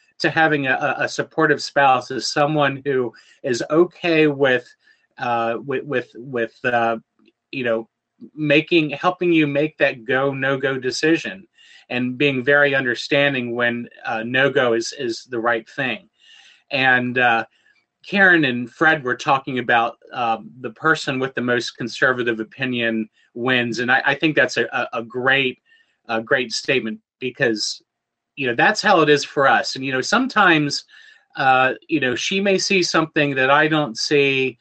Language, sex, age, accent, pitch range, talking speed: English, male, 30-49, American, 120-155 Hz, 160 wpm